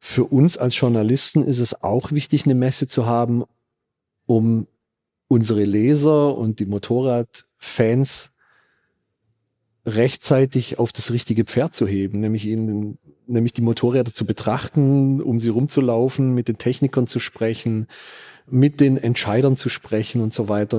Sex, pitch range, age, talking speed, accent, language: male, 110-130 Hz, 40-59, 140 wpm, German, German